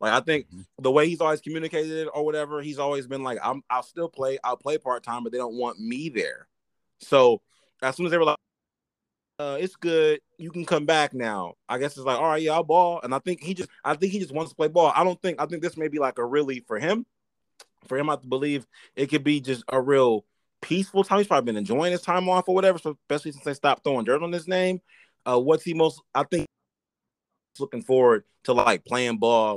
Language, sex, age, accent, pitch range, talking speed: English, male, 20-39, American, 115-160 Hz, 245 wpm